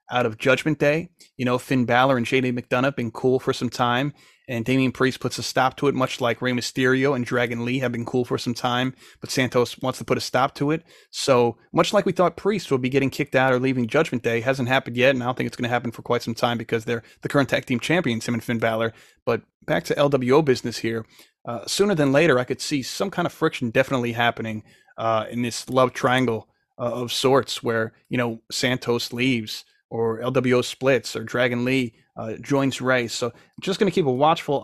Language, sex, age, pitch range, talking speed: English, male, 30-49, 120-145 Hz, 235 wpm